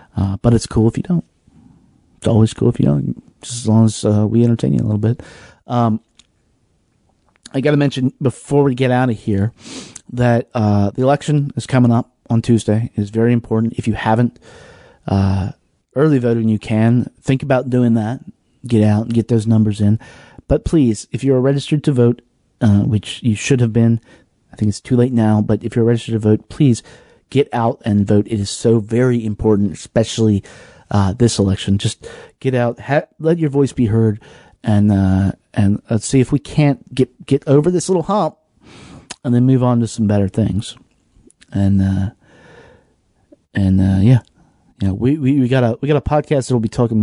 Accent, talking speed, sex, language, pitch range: American, 200 wpm, male, English, 105-130 Hz